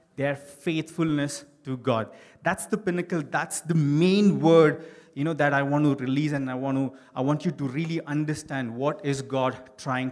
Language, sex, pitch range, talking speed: English, male, 140-210 Hz, 190 wpm